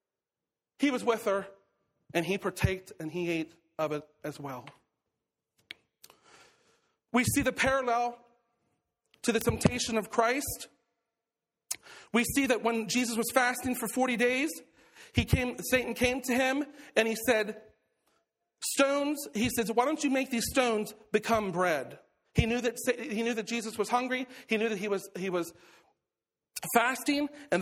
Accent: American